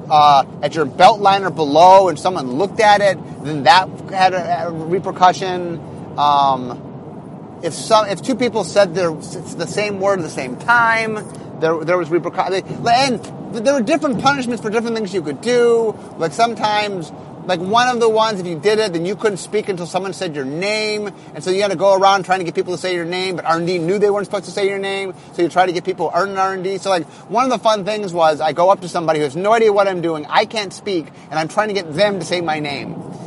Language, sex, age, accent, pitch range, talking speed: English, male, 30-49, American, 165-210 Hz, 245 wpm